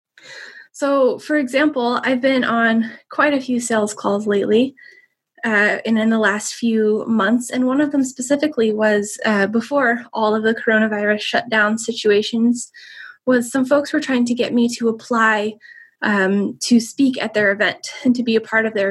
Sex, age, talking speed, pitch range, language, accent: female, 10-29, 180 wpm, 220-280 Hz, English, American